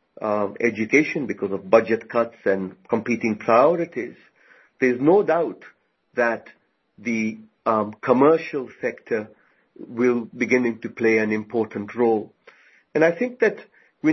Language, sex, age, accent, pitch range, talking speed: English, male, 50-69, Indian, 110-135 Hz, 125 wpm